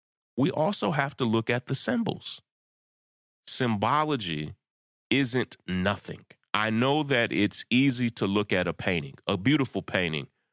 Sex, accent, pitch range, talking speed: male, American, 90-115 Hz, 135 wpm